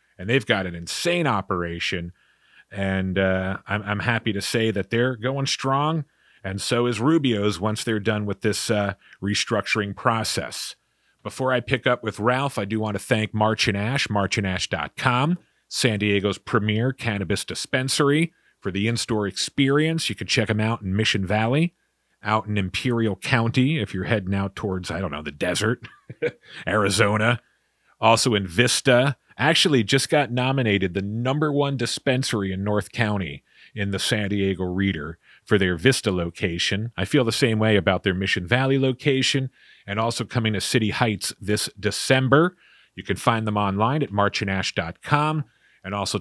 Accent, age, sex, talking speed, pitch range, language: American, 40-59, male, 165 wpm, 100-130 Hz, English